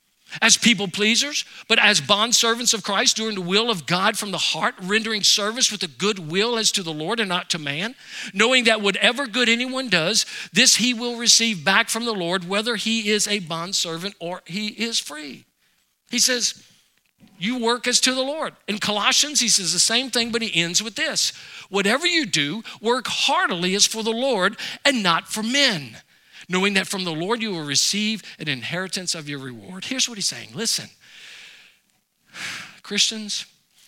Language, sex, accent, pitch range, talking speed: English, male, American, 180-245 Hz, 185 wpm